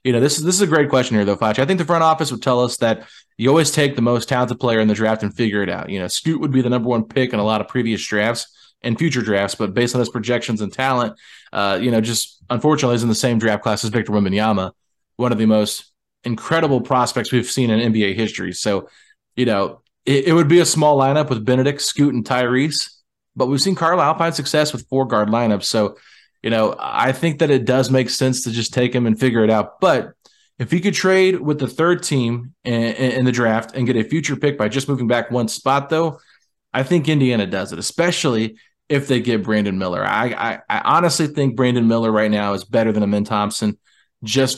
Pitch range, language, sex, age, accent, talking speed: 110-140 Hz, English, male, 20-39, American, 240 wpm